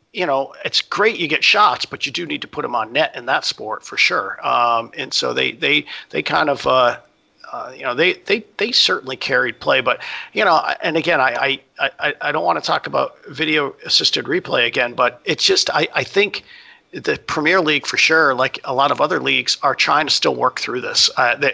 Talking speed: 230 wpm